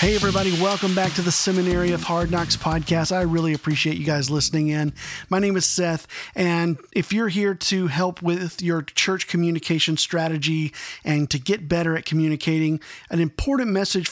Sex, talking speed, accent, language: male, 180 wpm, American, English